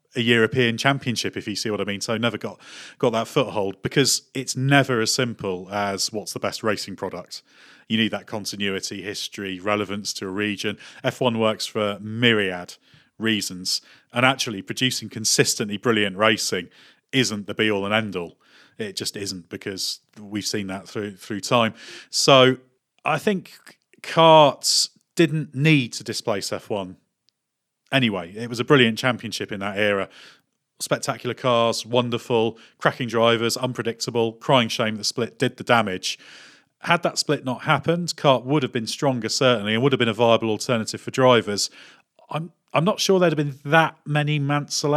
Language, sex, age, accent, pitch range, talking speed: English, male, 40-59, British, 105-130 Hz, 165 wpm